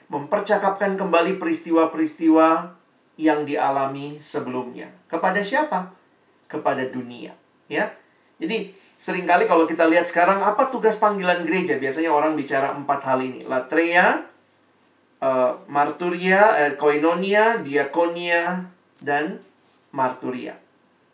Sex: male